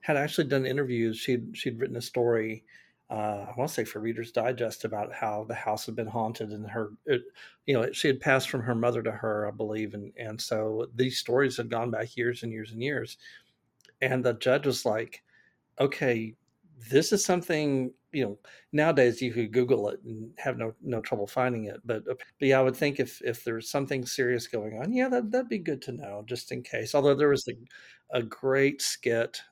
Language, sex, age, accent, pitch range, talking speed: English, male, 40-59, American, 115-135 Hz, 210 wpm